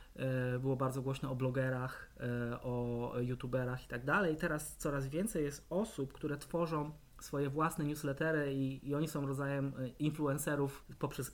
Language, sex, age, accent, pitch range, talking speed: Polish, male, 20-39, native, 130-160 Hz, 145 wpm